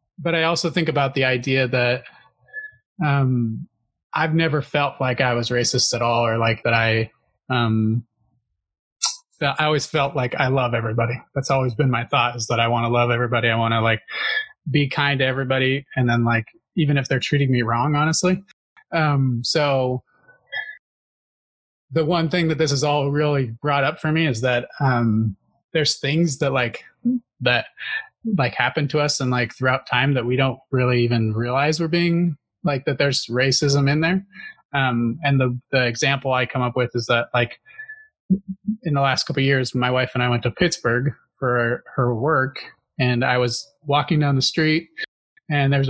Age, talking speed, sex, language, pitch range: 30-49, 185 wpm, male, English, 125-160 Hz